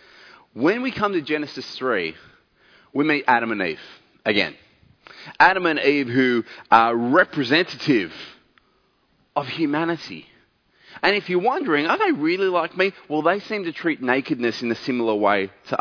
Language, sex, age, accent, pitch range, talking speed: English, male, 30-49, Australian, 120-165 Hz, 150 wpm